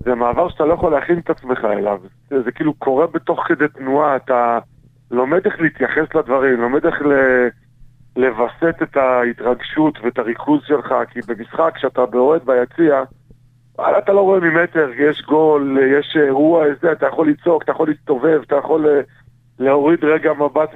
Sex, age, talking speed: male, 40-59, 155 wpm